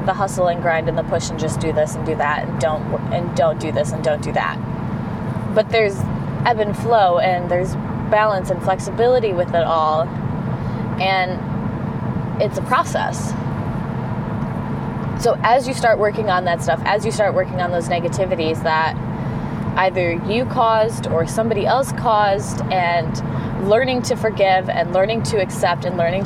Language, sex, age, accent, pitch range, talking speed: English, female, 20-39, American, 165-200 Hz, 170 wpm